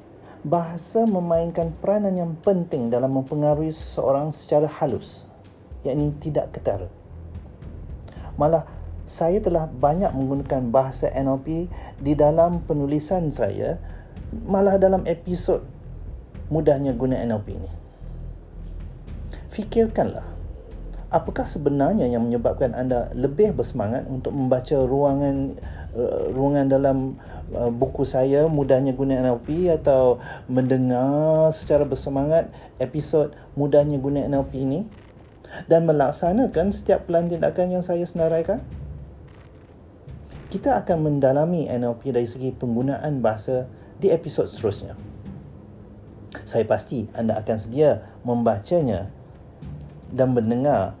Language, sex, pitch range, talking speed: Malay, male, 110-155 Hz, 100 wpm